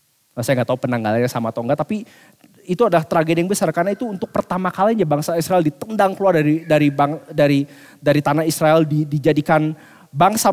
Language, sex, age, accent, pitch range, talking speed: English, male, 30-49, Indonesian, 140-180 Hz, 175 wpm